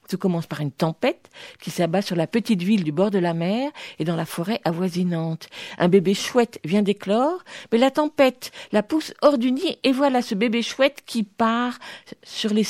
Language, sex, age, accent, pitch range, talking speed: French, female, 50-69, French, 175-245 Hz, 205 wpm